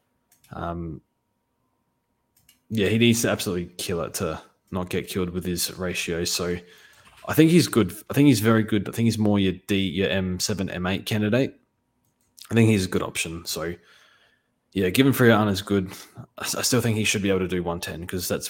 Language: English